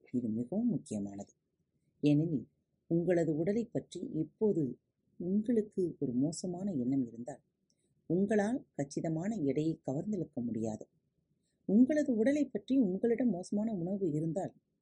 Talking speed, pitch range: 100 wpm, 135-210 Hz